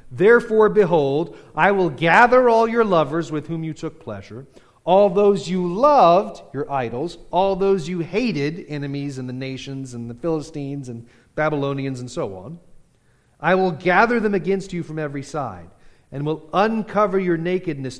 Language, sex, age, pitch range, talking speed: English, male, 40-59, 130-175 Hz, 165 wpm